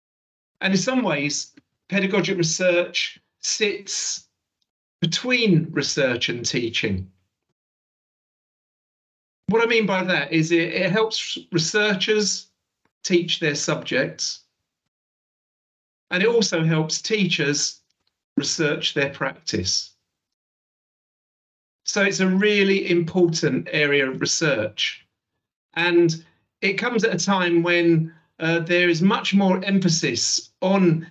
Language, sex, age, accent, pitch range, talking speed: English, male, 40-59, British, 145-190 Hz, 105 wpm